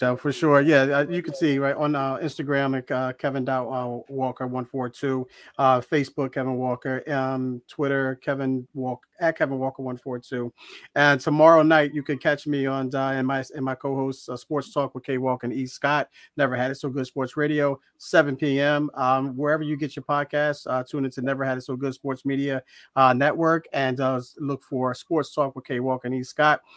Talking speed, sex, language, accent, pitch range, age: 215 wpm, male, English, American, 130-145 Hz, 40-59